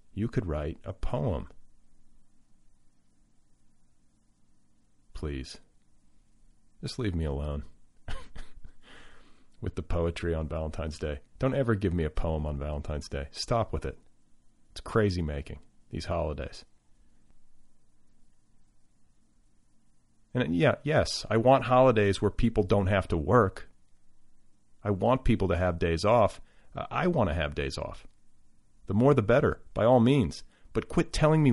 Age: 40-59